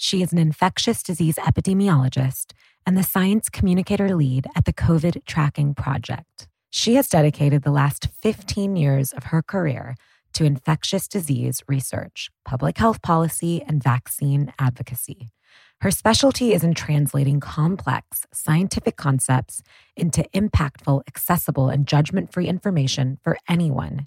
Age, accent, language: 20-39, American, English